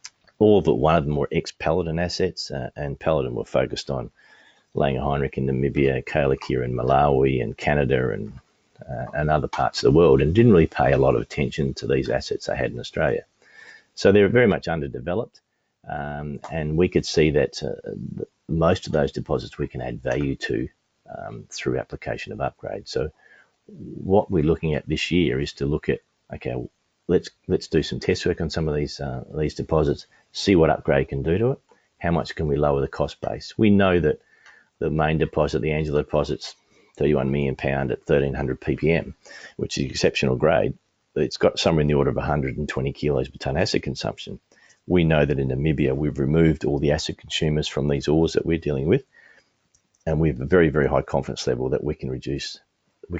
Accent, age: Australian, 40-59